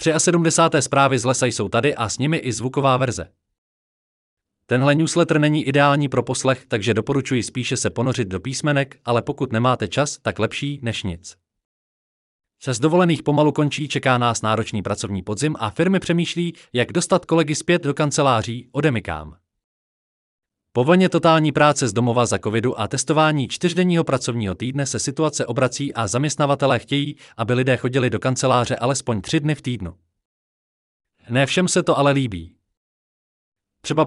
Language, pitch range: Czech, 115-150 Hz